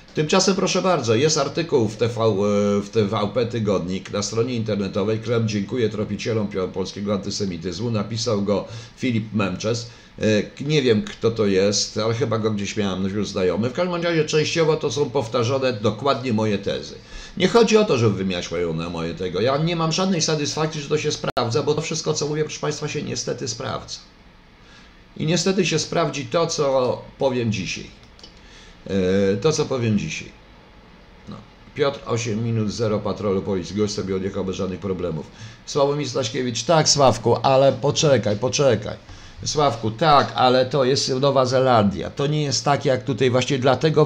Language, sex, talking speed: Polish, male, 165 wpm